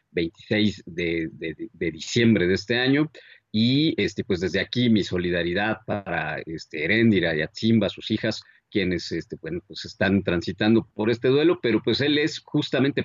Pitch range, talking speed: 95-120 Hz, 165 wpm